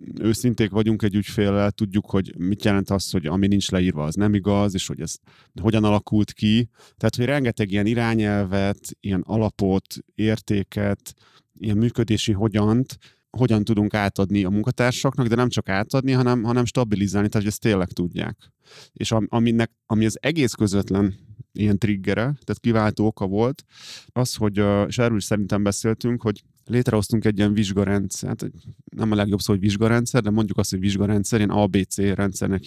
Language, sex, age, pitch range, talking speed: Hungarian, male, 30-49, 100-115 Hz, 160 wpm